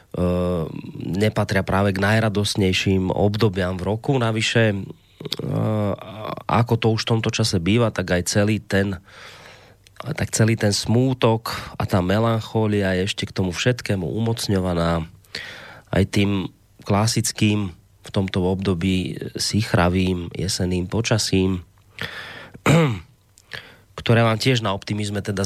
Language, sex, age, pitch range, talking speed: Slovak, male, 30-49, 95-115 Hz, 110 wpm